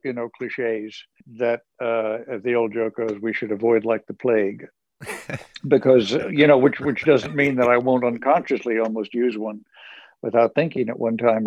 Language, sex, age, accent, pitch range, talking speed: English, male, 60-79, American, 110-130 Hz, 180 wpm